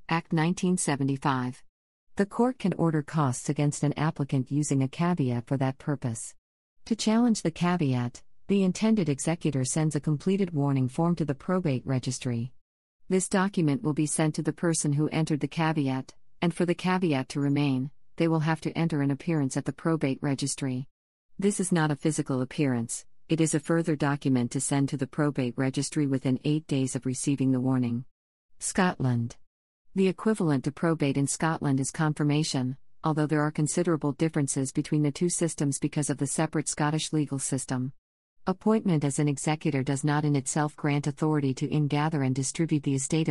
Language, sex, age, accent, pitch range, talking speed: English, female, 50-69, American, 135-160 Hz, 175 wpm